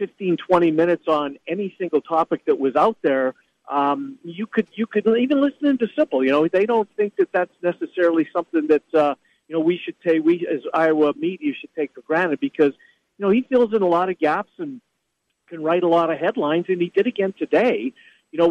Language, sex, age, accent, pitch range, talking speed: English, male, 50-69, American, 155-190 Hz, 220 wpm